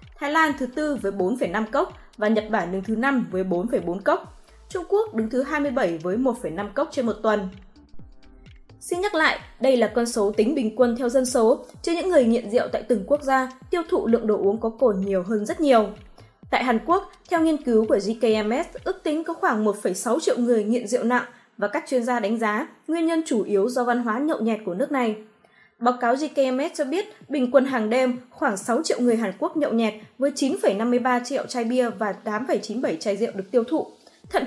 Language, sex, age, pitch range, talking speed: Vietnamese, female, 20-39, 220-290 Hz, 225 wpm